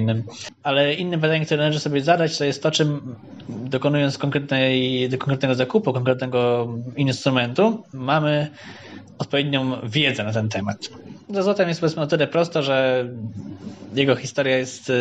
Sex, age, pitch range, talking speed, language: male, 20-39, 120-145 Hz, 130 wpm, Polish